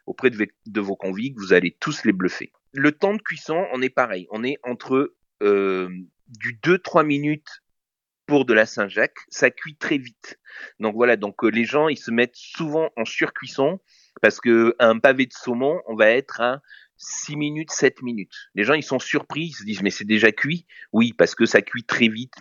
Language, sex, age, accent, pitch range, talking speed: French, male, 30-49, French, 110-150 Hz, 210 wpm